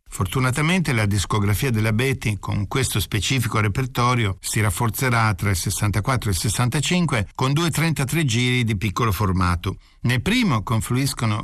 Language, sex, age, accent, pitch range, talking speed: Italian, male, 60-79, native, 105-145 Hz, 140 wpm